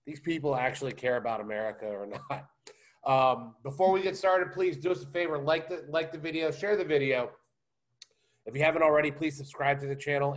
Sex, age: male, 30-49